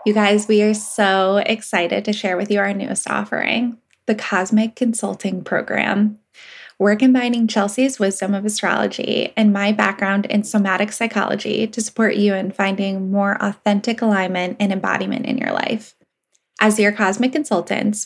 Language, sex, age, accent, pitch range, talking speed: English, female, 10-29, American, 200-225 Hz, 155 wpm